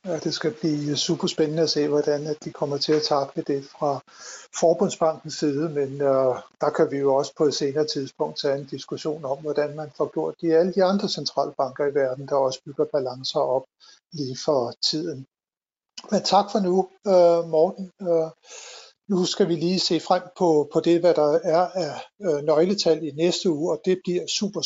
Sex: male